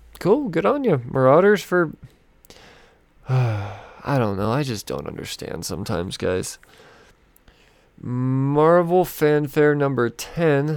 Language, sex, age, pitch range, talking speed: English, male, 20-39, 130-160 Hz, 105 wpm